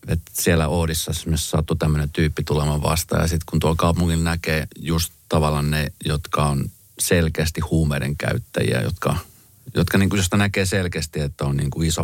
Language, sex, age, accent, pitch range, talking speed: Finnish, male, 30-49, native, 75-95 Hz, 150 wpm